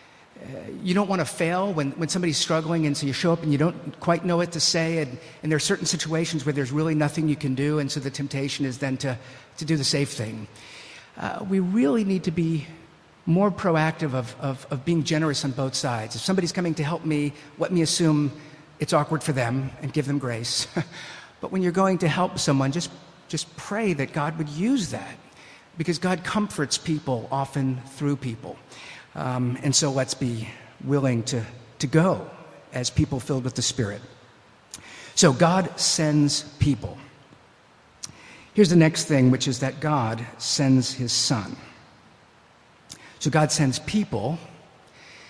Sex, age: male, 50-69